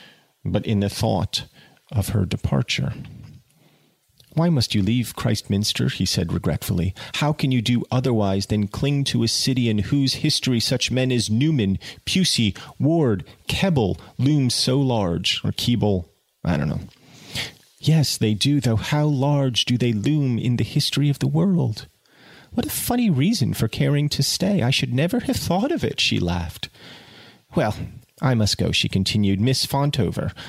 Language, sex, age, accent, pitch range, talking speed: English, male, 30-49, American, 105-145 Hz, 165 wpm